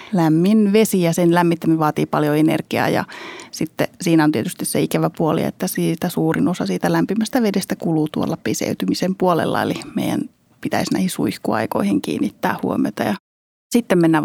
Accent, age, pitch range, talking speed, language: native, 30-49, 165-195 Hz, 155 wpm, Finnish